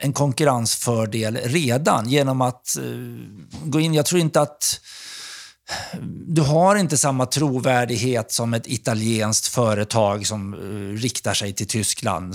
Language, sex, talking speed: Swedish, male, 130 wpm